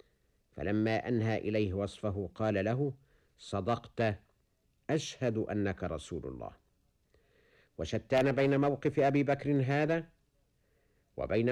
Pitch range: 100-145 Hz